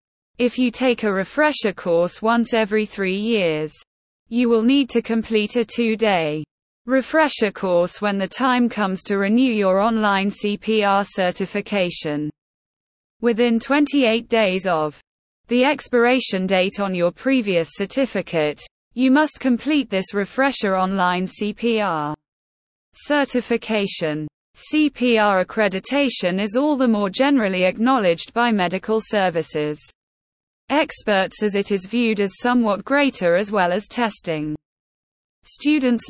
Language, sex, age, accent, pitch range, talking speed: English, female, 20-39, British, 185-240 Hz, 120 wpm